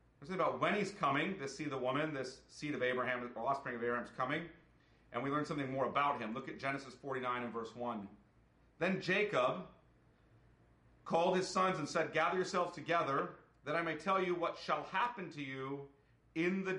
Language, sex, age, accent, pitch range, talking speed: English, male, 40-59, American, 130-165 Hz, 190 wpm